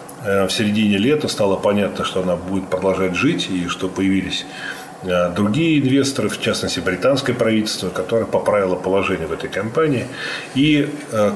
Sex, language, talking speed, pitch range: male, Russian, 145 wpm, 95-135 Hz